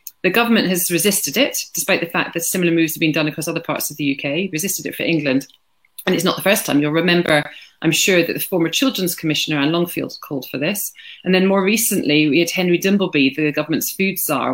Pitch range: 150-185 Hz